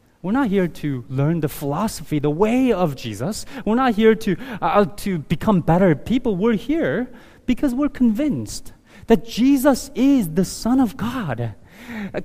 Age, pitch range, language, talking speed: 30-49, 140-235 Hz, English, 160 wpm